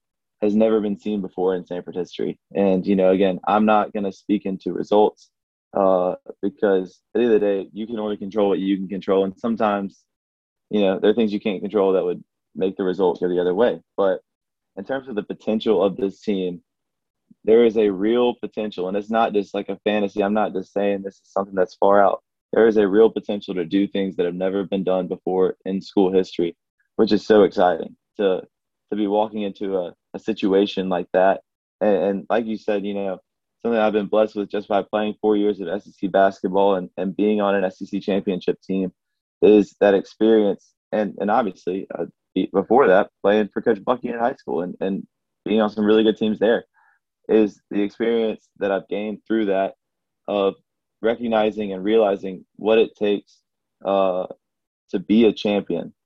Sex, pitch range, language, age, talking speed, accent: male, 95-105 Hz, English, 20-39, 200 wpm, American